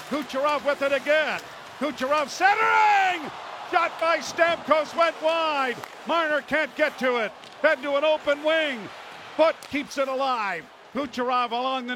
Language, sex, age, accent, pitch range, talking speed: English, male, 50-69, American, 230-275 Hz, 140 wpm